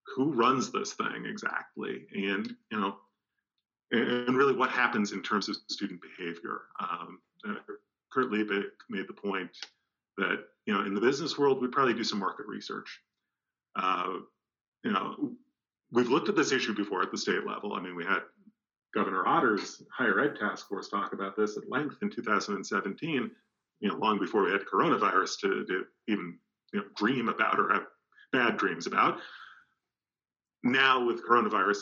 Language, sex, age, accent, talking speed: English, male, 40-59, American, 165 wpm